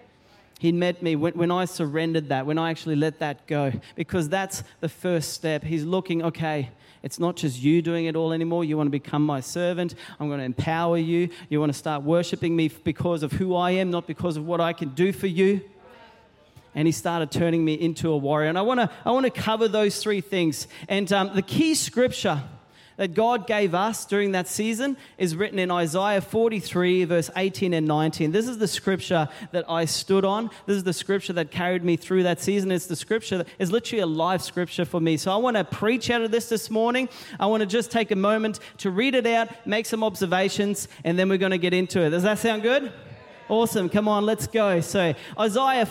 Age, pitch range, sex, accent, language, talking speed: 30-49, 160-210 Hz, male, Australian, English, 225 wpm